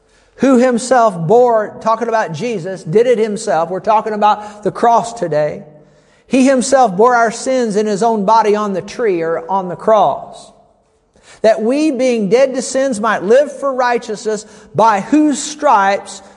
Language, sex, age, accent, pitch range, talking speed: English, male, 50-69, American, 195-230 Hz, 160 wpm